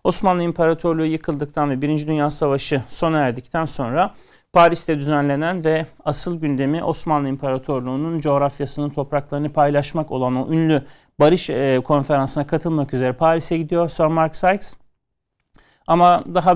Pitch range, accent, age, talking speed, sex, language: 140-170 Hz, native, 40-59, 125 wpm, male, Turkish